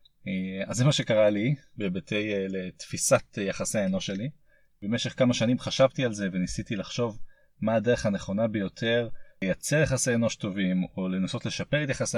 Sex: male